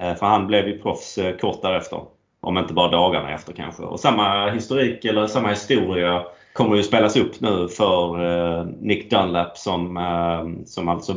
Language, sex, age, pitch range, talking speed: Swedish, male, 30-49, 85-110 Hz, 160 wpm